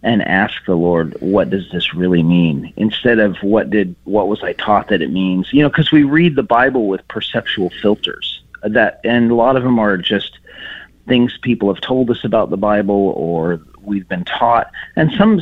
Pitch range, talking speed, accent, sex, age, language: 90-125 Hz, 200 wpm, American, male, 40-59, English